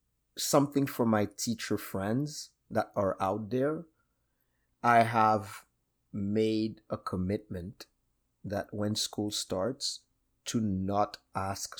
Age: 30-49